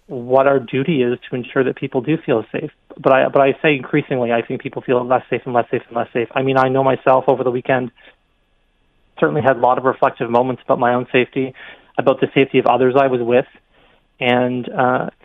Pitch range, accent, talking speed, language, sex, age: 130-145 Hz, American, 230 wpm, English, male, 30-49